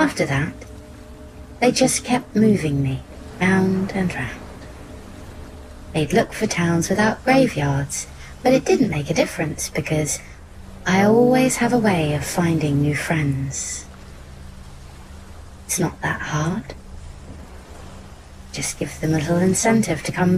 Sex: female